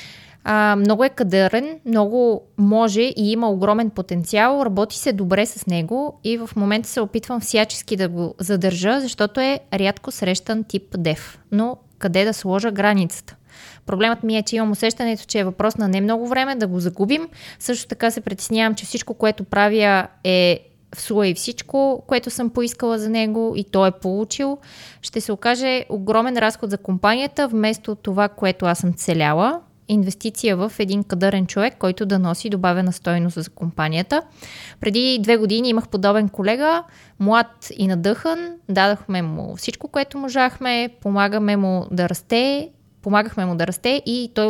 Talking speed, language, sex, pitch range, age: 165 wpm, Bulgarian, female, 195-240 Hz, 20-39